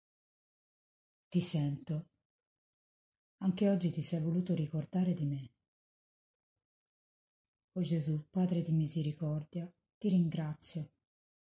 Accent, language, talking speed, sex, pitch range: native, Italian, 90 wpm, female, 140-175 Hz